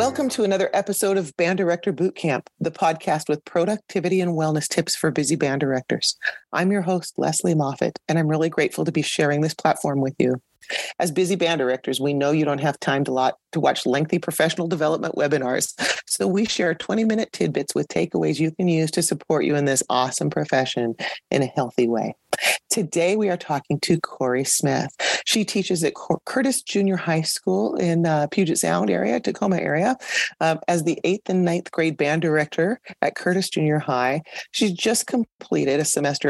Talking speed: 185 wpm